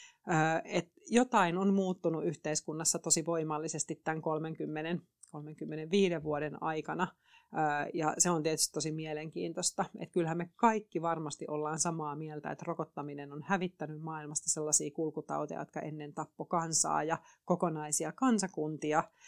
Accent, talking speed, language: native, 120 wpm, Finnish